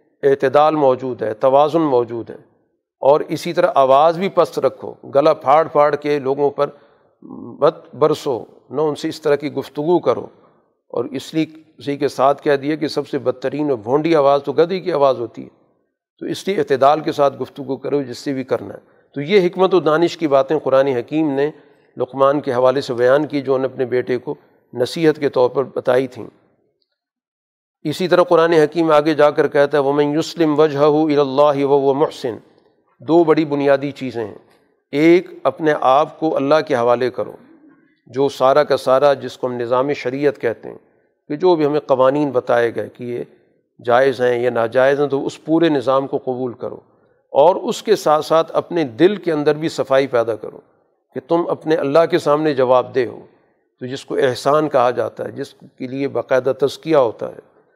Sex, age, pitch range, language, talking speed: male, 50-69, 135-160 Hz, Urdu, 195 wpm